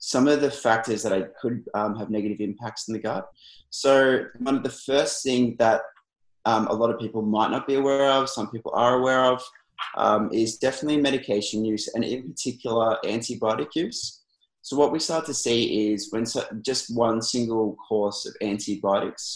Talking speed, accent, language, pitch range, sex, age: 185 wpm, Australian, English, 105-130 Hz, male, 20-39